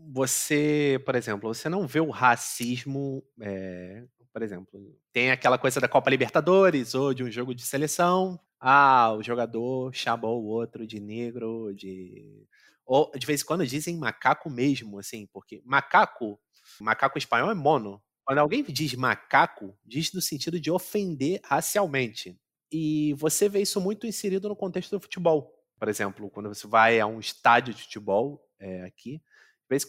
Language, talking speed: Portuguese, 155 wpm